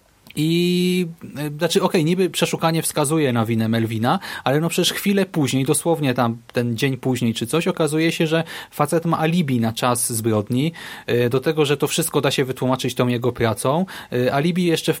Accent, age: native, 30-49